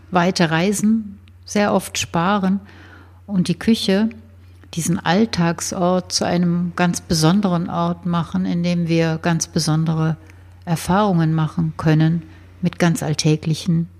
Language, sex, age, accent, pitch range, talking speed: German, female, 60-79, German, 110-180 Hz, 115 wpm